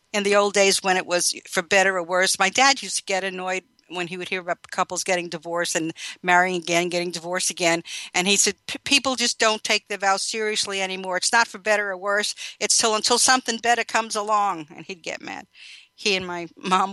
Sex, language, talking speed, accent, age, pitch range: female, English, 225 wpm, American, 50-69, 175-210 Hz